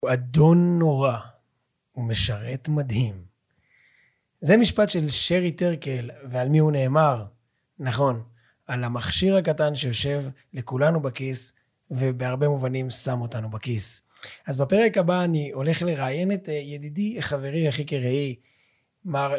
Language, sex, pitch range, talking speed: Hebrew, male, 130-165 Hz, 120 wpm